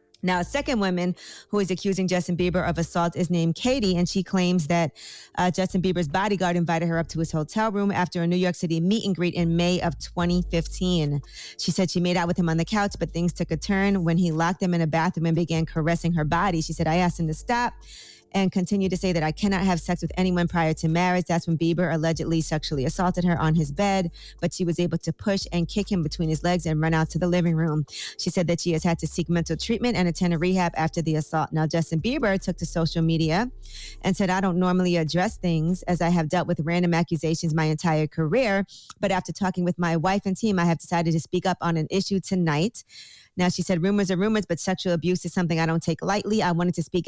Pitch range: 165-185 Hz